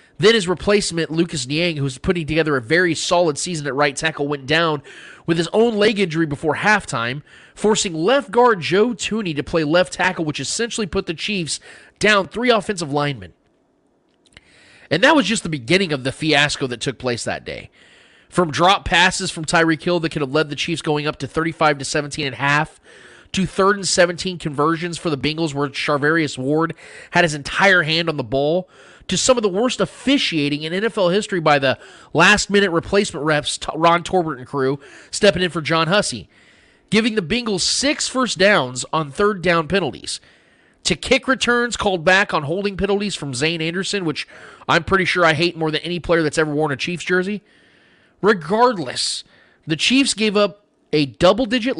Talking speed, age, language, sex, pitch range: 185 wpm, 30-49, English, male, 150-200 Hz